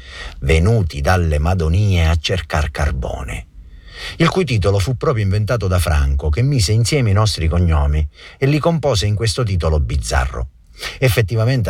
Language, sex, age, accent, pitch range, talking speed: Italian, male, 50-69, native, 75-110 Hz, 145 wpm